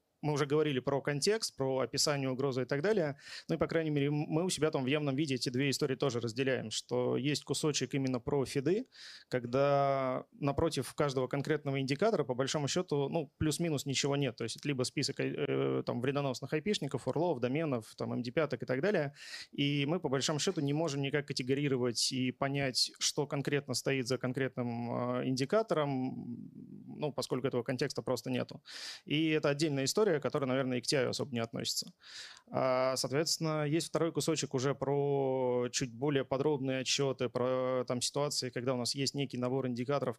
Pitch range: 130-150 Hz